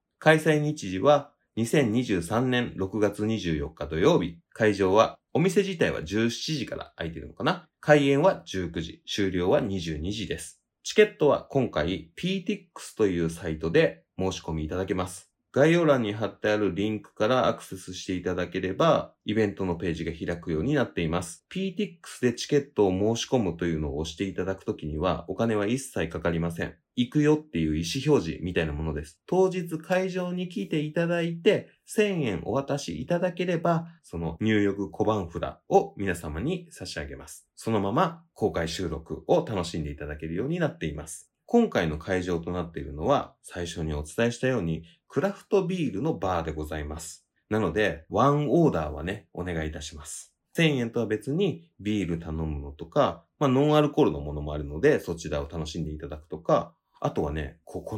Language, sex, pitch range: Japanese, male, 85-140 Hz